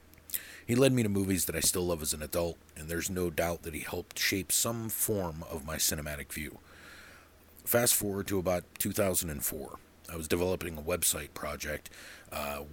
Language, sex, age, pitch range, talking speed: English, male, 40-59, 80-95 Hz, 180 wpm